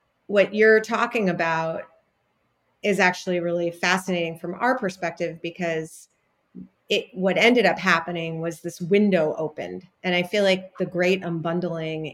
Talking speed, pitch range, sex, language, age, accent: 140 wpm, 165-195 Hz, female, English, 30-49, American